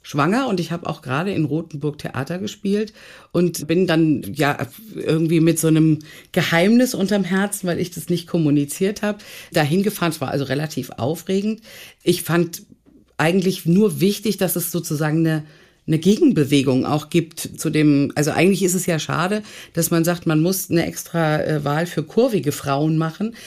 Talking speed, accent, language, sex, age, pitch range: 170 wpm, German, German, female, 50-69, 160-190 Hz